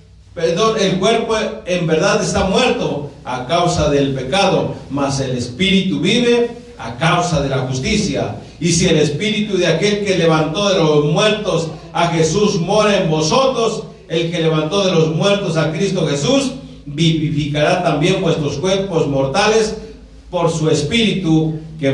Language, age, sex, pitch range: Spanish, 50-69, male, 150-200 Hz